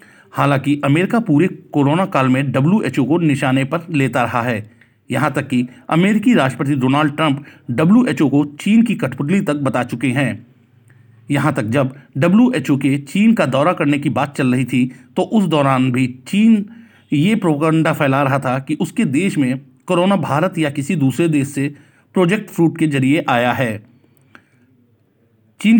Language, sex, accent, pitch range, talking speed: Hindi, male, native, 130-165 Hz, 165 wpm